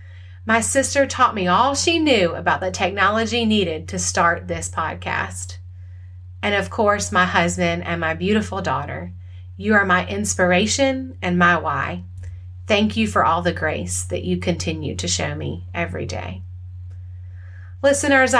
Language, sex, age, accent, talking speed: English, female, 30-49, American, 150 wpm